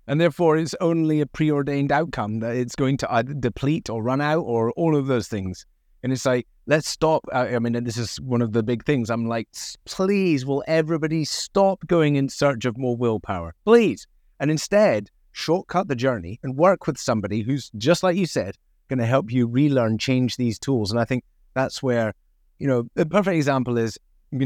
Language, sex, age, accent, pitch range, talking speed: English, male, 30-49, British, 110-145 Hz, 200 wpm